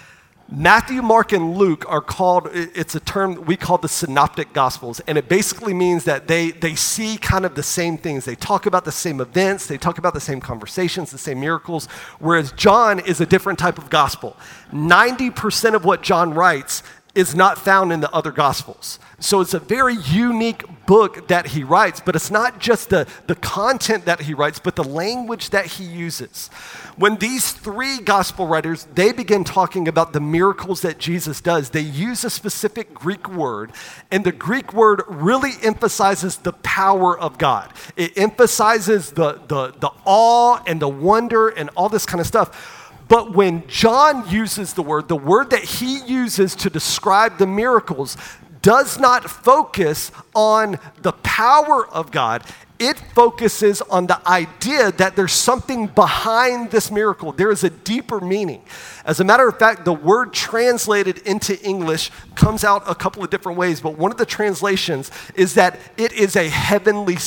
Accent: American